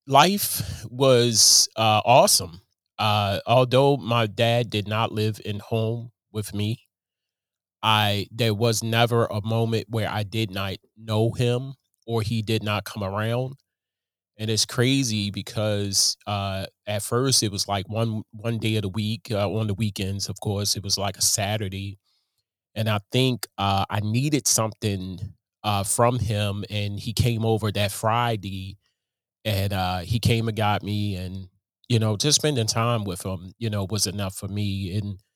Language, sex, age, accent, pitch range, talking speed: English, male, 30-49, American, 100-115 Hz, 165 wpm